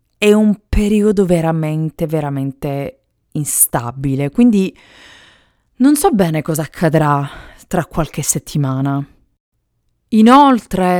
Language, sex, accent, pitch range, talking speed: Italian, female, native, 140-180 Hz, 85 wpm